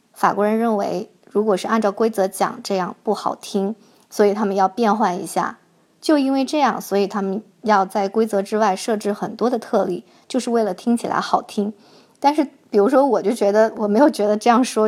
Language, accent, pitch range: Chinese, native, 195-225 Hz